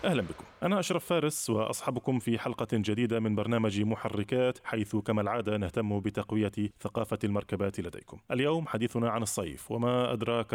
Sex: male